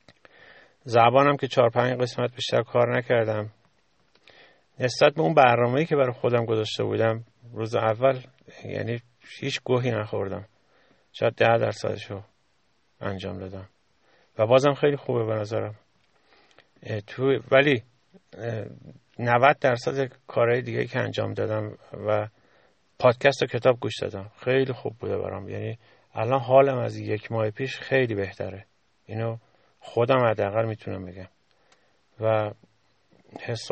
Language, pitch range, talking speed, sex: Persian, 105-125 Hz, 120 wpm, male